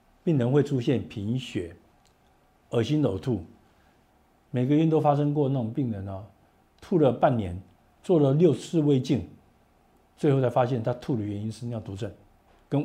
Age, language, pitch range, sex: 50-69, Chinese, 110-145 Hz, male